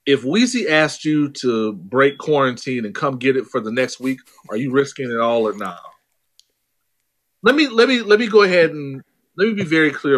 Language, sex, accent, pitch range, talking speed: English, male, American, 120-160 Hz, 210 wpm